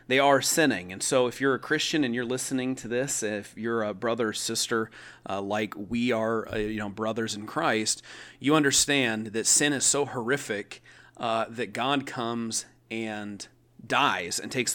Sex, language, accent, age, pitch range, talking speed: male, English, American, 30-49, 110-135 Hz, 185 wpm